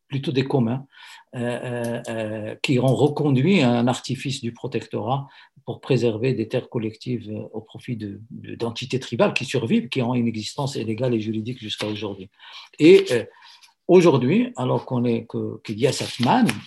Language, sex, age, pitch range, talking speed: French, male, 50-69, 110-140 Hz, 160 wpm